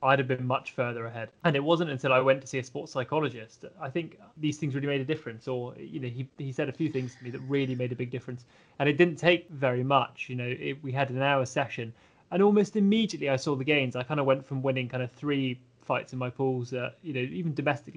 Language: English